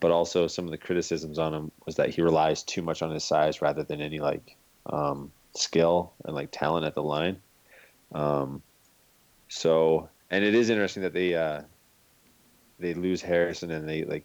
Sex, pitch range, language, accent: male, 80-90 Hz, English, American